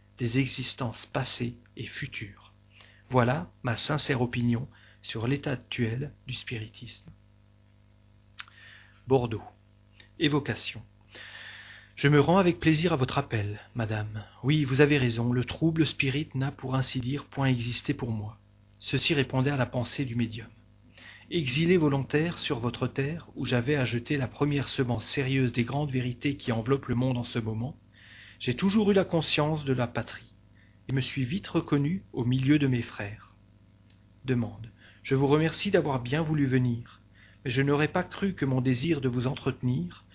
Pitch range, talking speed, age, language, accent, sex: 110-145 Hz, 160 wpm, 40-59, French, French, male